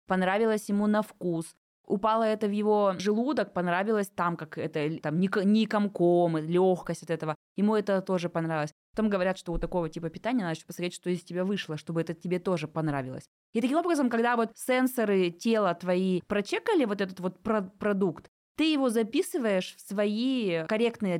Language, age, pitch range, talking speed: Russian, 20-39, 175-225 Hz, 175 wpm